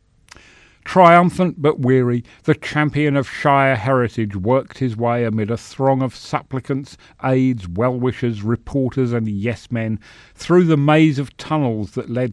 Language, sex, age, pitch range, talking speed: English, male, 40-59, 100-135 Hz, 145 wpm